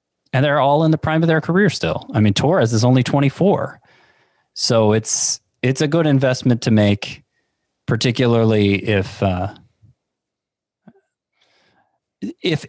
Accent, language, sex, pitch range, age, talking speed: American, English, male, 100-130 Hz, 30-49, 130 wpm